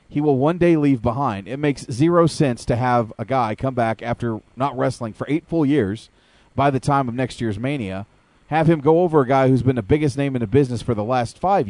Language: English